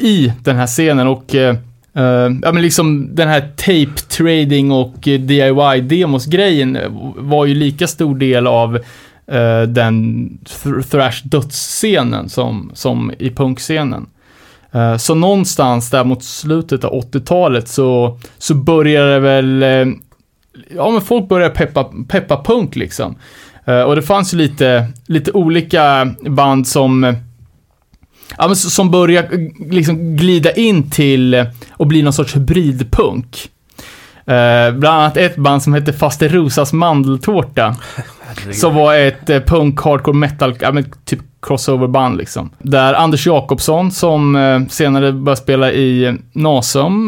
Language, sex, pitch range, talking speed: Swedish, male, 125-155 Hz, 125 wpm